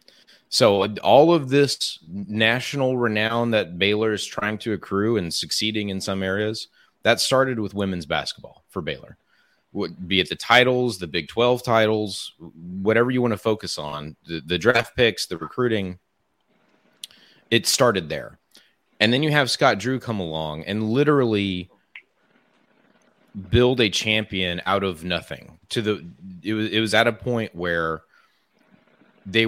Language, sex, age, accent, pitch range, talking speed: English, male, 30-49, American, 95-120 Hz, 150 wpm